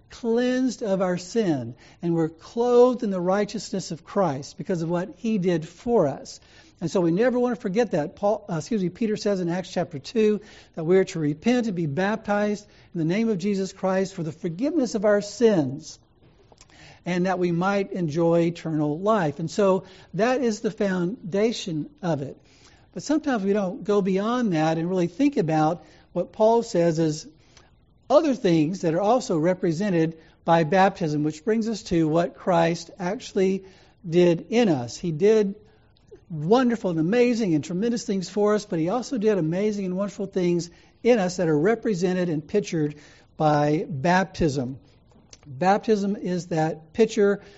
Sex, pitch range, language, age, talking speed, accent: male, 165-210 Hz, English, 60-79, 170 wpm, American